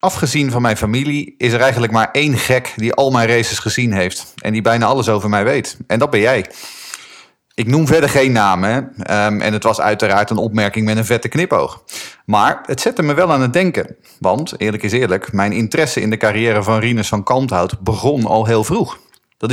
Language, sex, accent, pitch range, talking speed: Dutch, male, Dutch, 110-140 Hz, 210 wpm